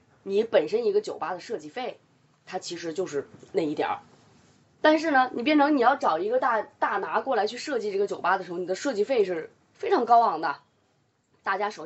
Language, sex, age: Chinese, female, 20-39